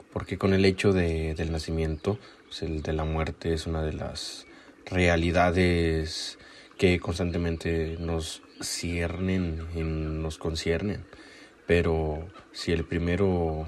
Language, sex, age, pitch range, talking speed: Spanish, male, 20-39, 80-95 Hz, 115 wpm